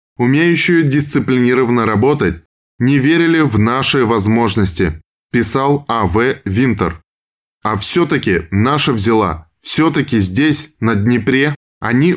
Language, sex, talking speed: Russian, male, 105 wpm